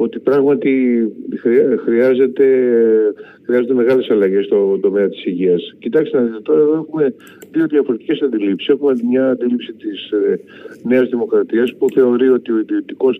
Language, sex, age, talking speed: Greek, male, 50-69, 130 wpm